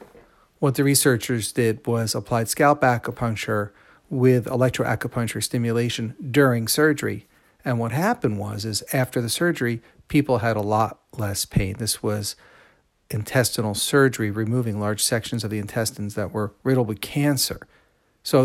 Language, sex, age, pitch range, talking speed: English, male, 40-59, 110-135 Hz, 140 wpm